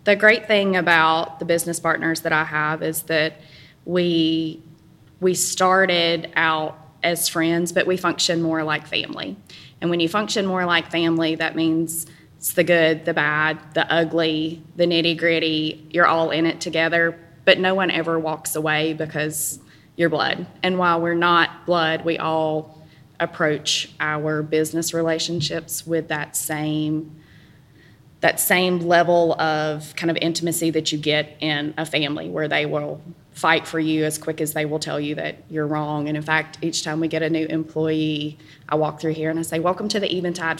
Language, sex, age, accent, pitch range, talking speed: English, female, 20-39, American, 155-170 Hz, 180 wpm